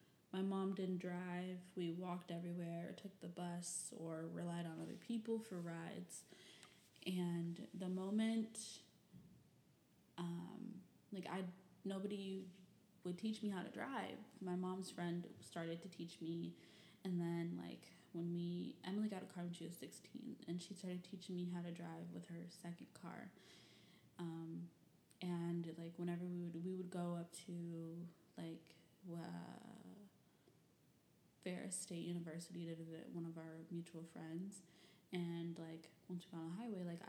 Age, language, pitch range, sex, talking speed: 20-39, English, 165-185 Hz, female, 150 wpm